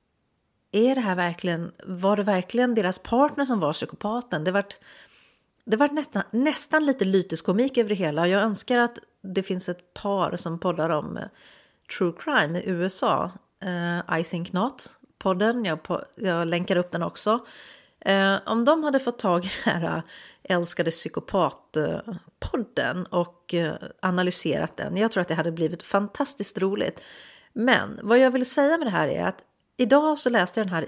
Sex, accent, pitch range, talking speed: female, native, 175-235 Hz, 170 wpm